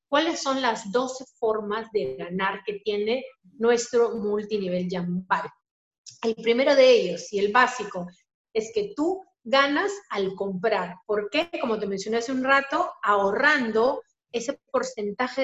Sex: female